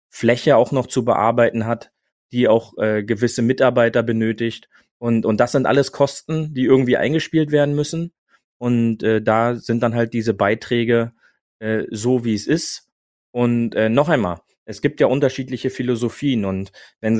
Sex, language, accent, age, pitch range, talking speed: male, German, German, 30-49, 115-135 Hz, 165 wpm